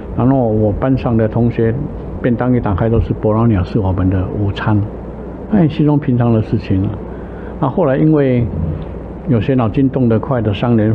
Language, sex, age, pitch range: Chinese, male, 60-79, 105-130 Hz